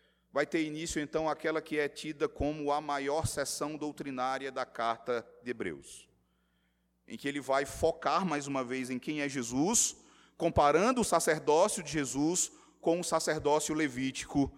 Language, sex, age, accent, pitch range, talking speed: Portuguese, male, 30-49, Brazilian, 130-160 Hz, 155 wpm